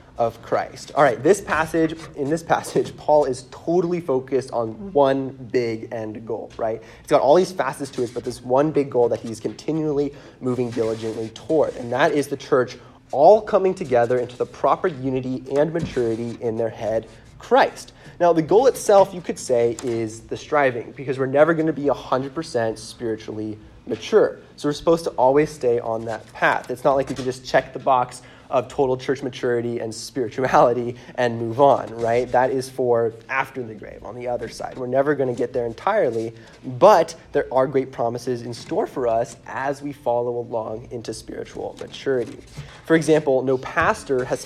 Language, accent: English, American